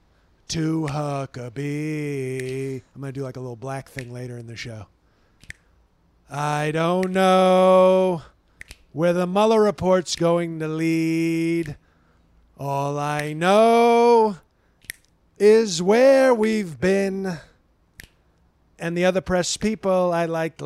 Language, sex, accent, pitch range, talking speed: English, male, American, 130-195 Hz, 110 wpm